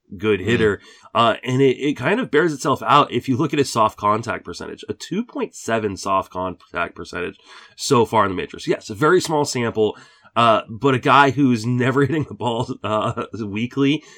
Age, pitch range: 30-49, 105-130 Hz